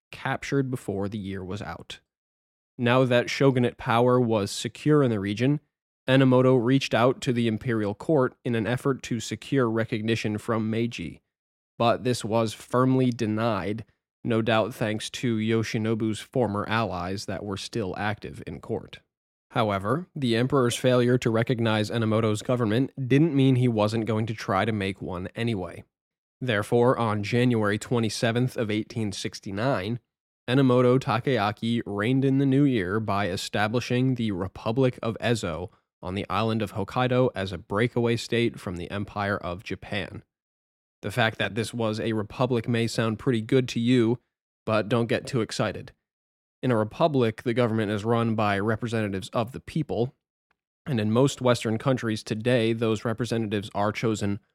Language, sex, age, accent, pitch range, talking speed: English, male, 20-39, American, 105-125 Hz, 155 wpm